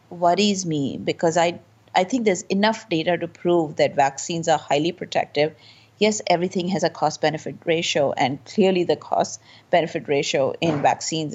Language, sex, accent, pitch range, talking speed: English, female, Indian, 155-200 Hz, 165 wpm